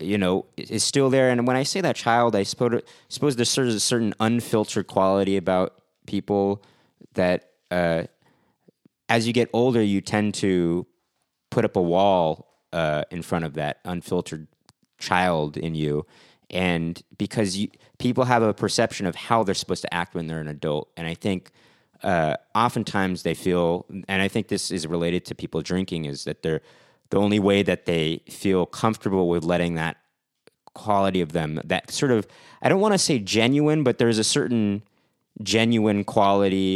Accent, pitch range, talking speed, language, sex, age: American, 90-115 Hz, 175 wpm, English, male, 30-49